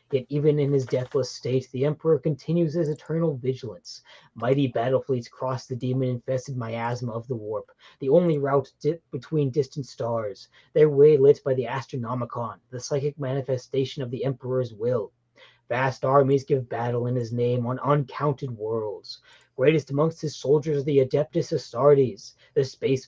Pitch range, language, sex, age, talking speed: 125-145 Hz, English, male, 30-49, 160 wpm